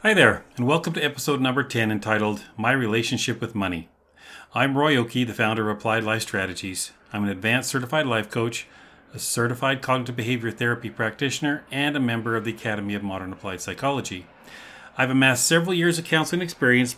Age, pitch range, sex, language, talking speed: 40-59, 105-140 Hz, male, English, 180 wpm